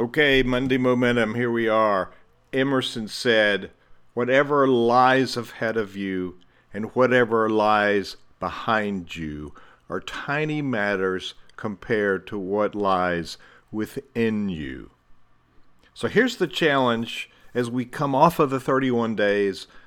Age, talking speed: 50-69, 120 wpm